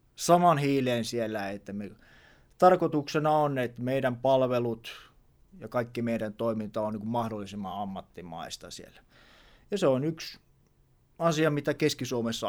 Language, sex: Finnish, male